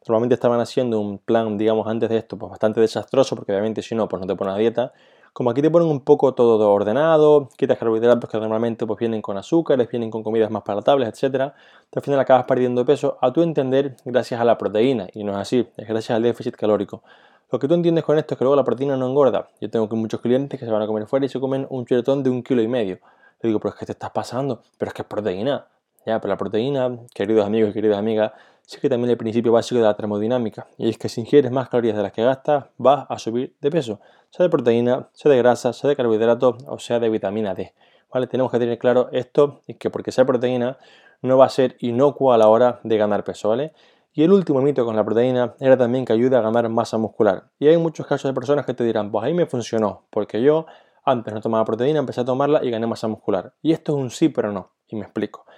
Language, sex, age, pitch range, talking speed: Spanish, male, 20-39, 110-135 Hz, 255 wpm